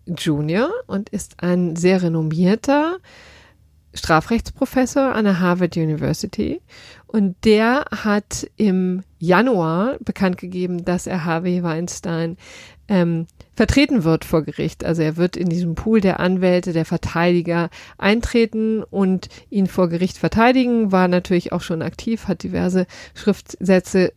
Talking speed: 125 wpm